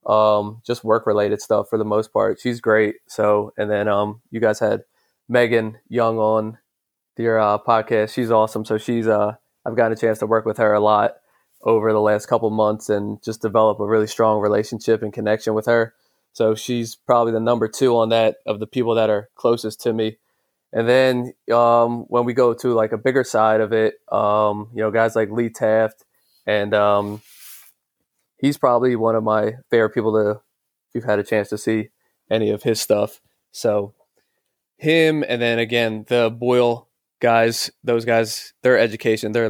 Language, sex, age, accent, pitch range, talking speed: English, male, 20-39, American, 110-120 Hz, 190 wpm